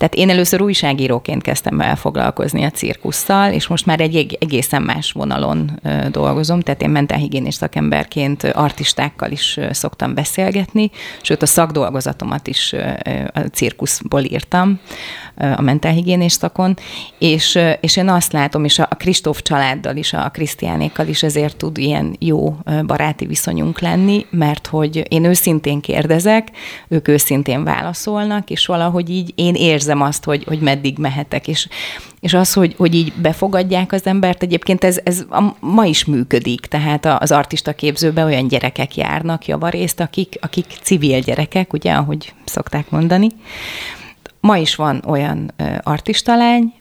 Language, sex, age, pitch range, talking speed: Hungarian, female, 30-49, 145-180 Hz, 140 wpm